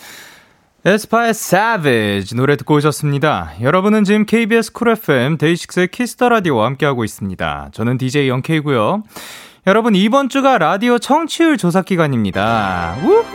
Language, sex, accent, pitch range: Korean, male, native, 160-250 Hz